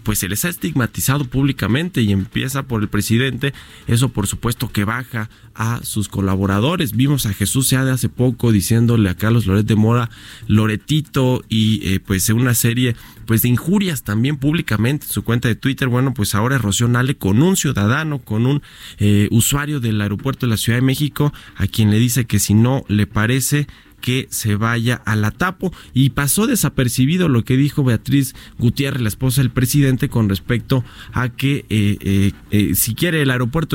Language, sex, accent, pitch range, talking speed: Spanish, male, Mexican, 110-135 Hz, 185 wpm